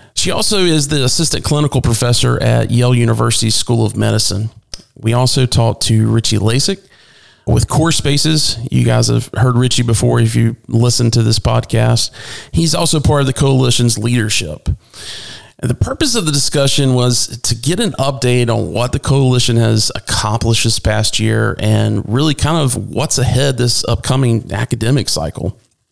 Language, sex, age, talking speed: English, male, 40-59, 165 wpm